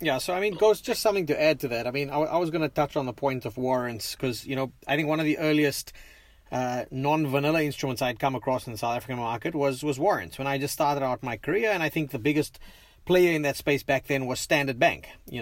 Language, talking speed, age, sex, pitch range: English, 270 wpm, 30-49, male, 130-160 Hz